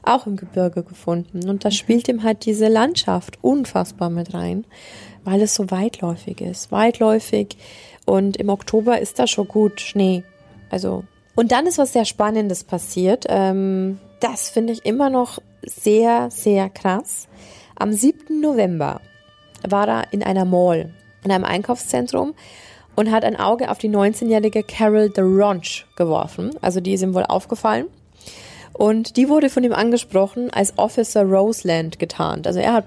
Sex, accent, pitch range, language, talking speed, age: female, German, 185-225 Hz, German, 155 wpm, 20-39